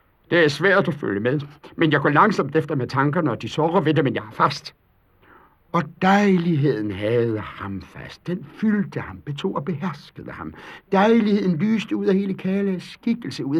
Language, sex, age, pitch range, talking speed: Danish, male, 60-79, 110-180 Hz, 185 wpm